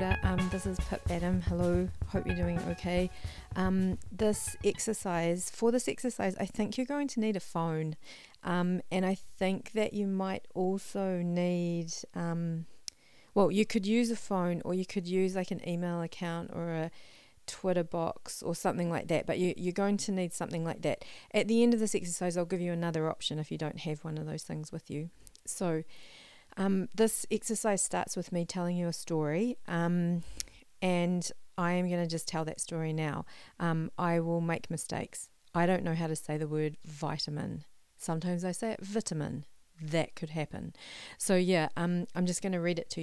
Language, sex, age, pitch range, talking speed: English, female, 40-59, 160-190 Hz, 190 wpm